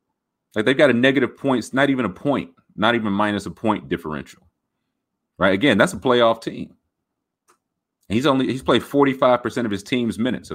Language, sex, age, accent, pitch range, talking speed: English, male, 30-49, American, 90-120 Hz, 190 wpm